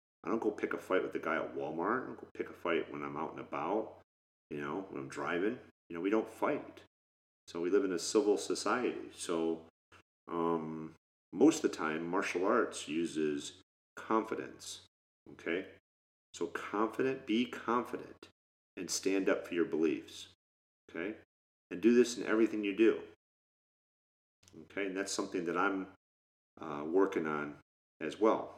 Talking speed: 165 wpm